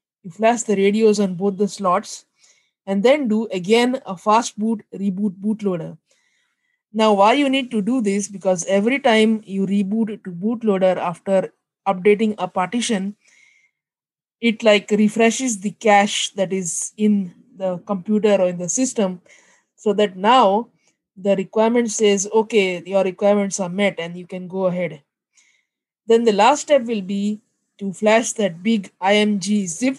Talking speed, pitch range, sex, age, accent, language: 155 wpm, 190-220 Hz, female, 20-39, Indian, English